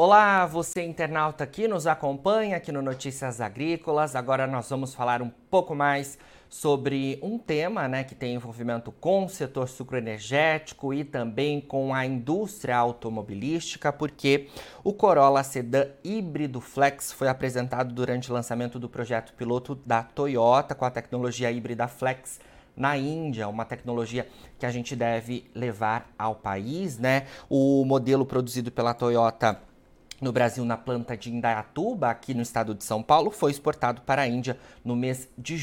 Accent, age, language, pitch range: Brazilian, 20-39, Portuguese, 120-145 Hz